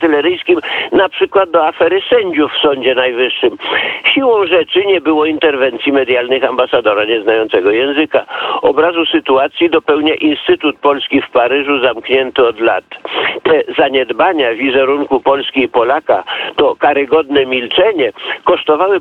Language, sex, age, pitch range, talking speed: Polish, male, 50-69, 135-190 Hz, 115 wpm